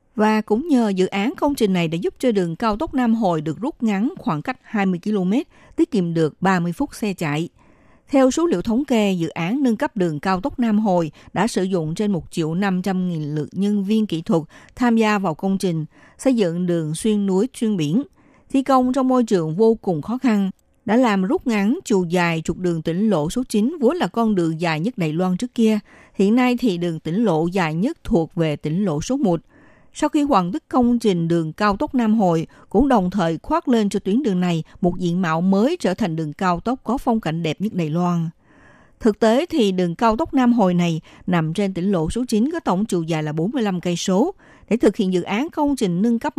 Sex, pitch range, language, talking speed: female, 175-235 Hz, Vietnamese, 235 wpm